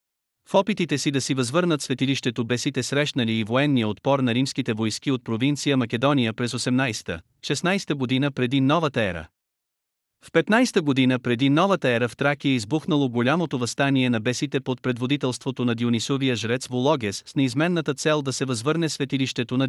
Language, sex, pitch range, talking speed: Bulgarian, male, 120-150 Hz, 160 wpm